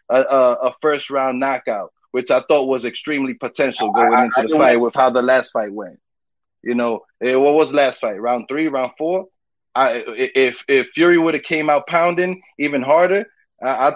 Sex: male